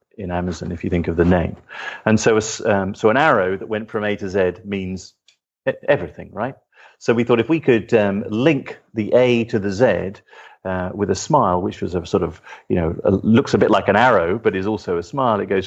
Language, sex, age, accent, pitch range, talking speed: English, male, 40-59, British, 90-110 Hz, 235 wpm